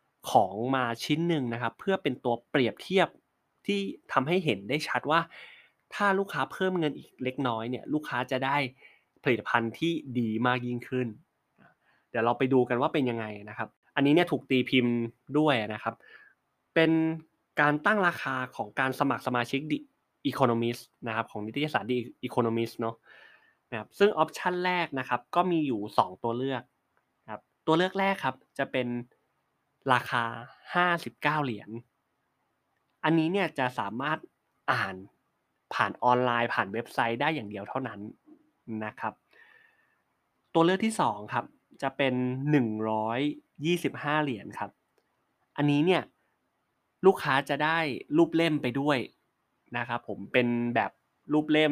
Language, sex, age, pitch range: Thai, male, 20-39, 120-155 Hz